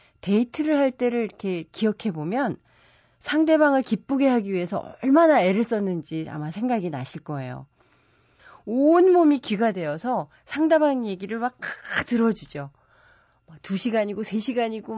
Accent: native